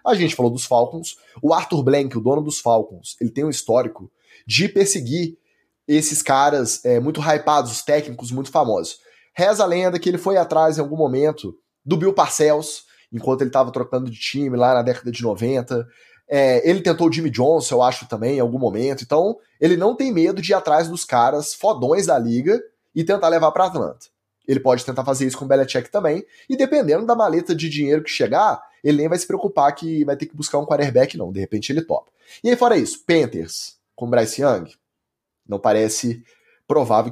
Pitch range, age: 125-165 Hz, 20-39